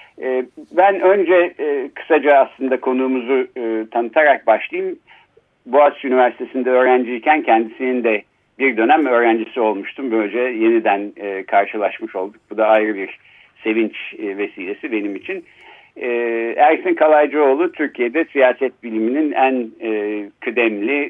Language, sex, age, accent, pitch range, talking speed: Turkish, male, 60-79, native, 110-155 Hz, 115 wpm